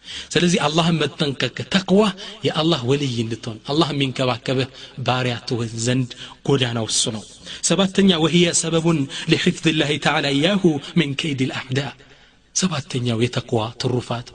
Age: 30-49